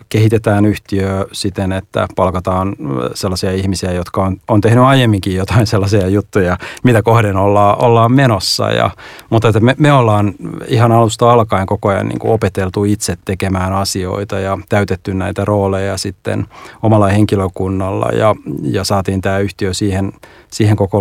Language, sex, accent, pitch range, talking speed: Finnish, male, native, 95-110 Hz, 145 wpm